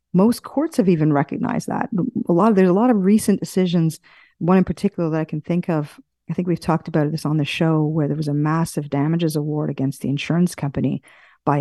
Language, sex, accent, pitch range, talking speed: English, female, American, 155-190 Hz, 225 wpm